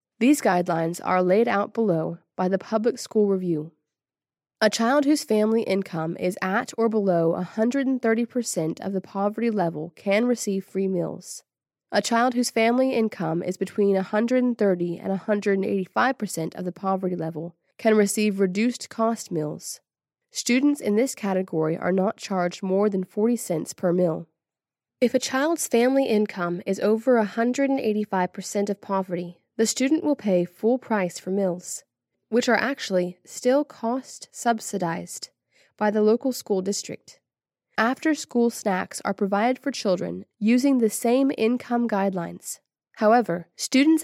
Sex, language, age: female, English, 20-39